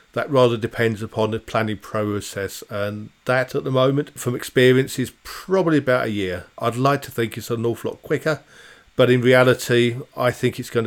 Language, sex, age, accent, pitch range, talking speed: English, male, 40-59, British, 110-125 Hz, 195 wpm